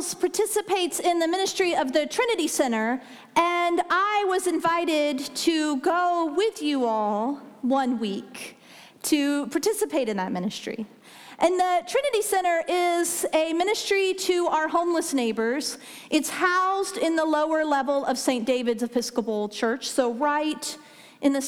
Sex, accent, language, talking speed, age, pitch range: female, American, English, 140 wpm, 40-59, 250-345 Hz